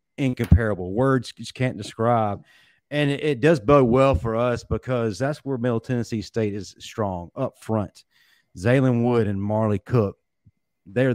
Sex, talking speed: male, 155 wpm